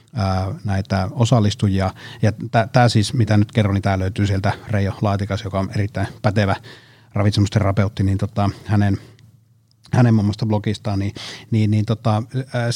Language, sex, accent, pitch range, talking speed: Finnish, male, native, 105-125 Hz, 145 wpm